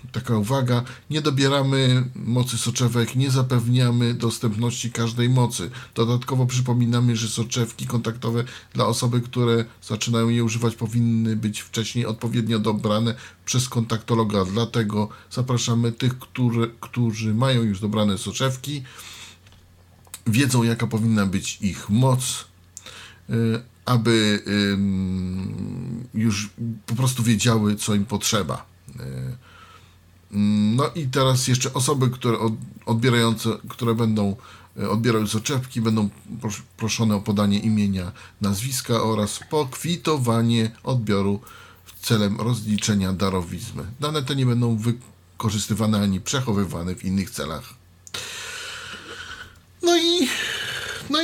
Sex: male